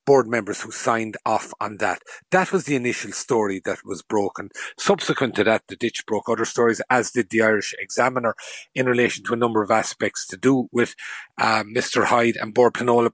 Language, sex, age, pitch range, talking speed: English, male, 40-59, 110-125 Hz, 195 wpm